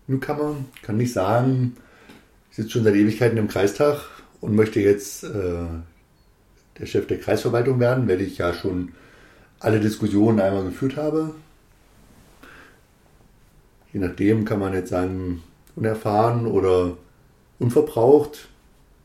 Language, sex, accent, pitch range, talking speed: German, male, German, 95-120 Hz, 125 wpm